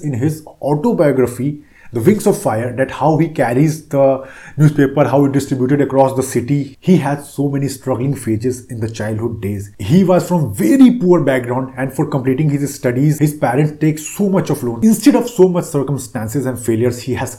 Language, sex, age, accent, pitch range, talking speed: Hindi, male, 30-49, native, 135-170 Hz, 195 wpm